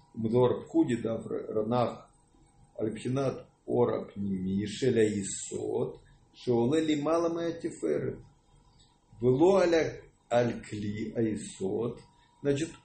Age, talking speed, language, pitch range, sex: 50-69, 55 wpm, English, 120-155 Hz, male